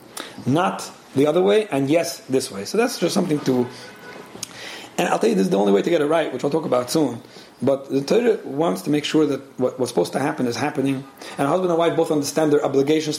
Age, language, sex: 40-59, English, male